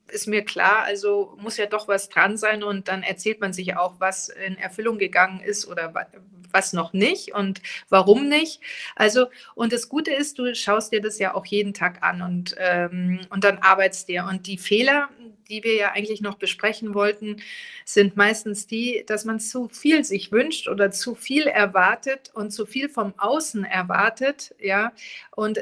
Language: German